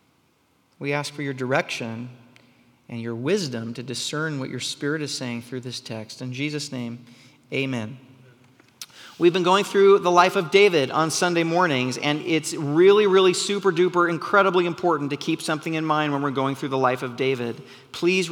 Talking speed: 175 wpm